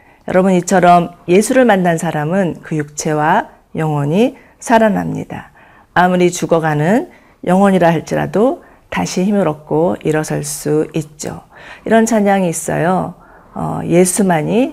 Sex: female